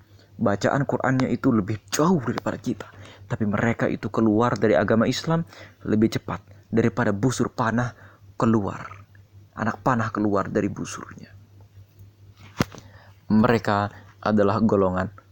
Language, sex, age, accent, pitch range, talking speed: Indonesian, male, 30-49, native, 100-120 Hz, 110 wpm